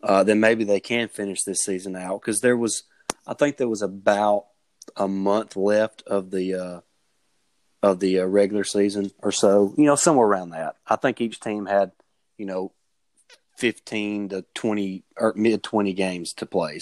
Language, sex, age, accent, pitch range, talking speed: English, male, 30-49, American, 95-105 Hz, 180 wpm